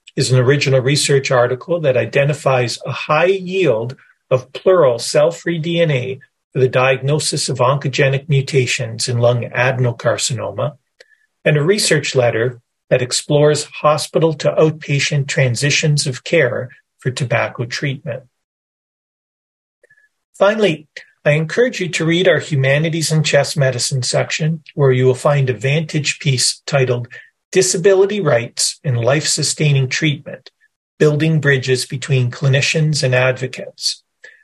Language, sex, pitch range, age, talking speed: English, male, 130-160 Hz, 40-59, 120 wpm